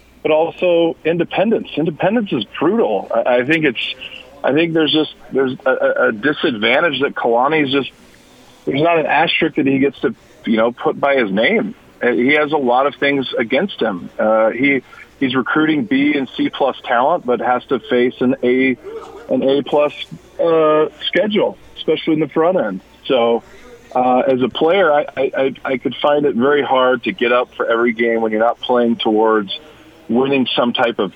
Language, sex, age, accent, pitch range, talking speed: English, male, 40-59, American, 115-145 Hz, 185 wpm